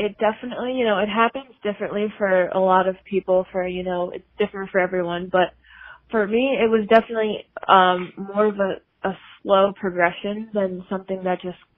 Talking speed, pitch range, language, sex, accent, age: 185 wpm, 185-205 Hz, English, female, American, 20-39